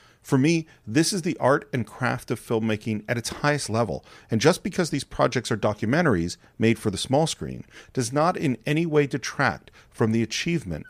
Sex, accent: male, American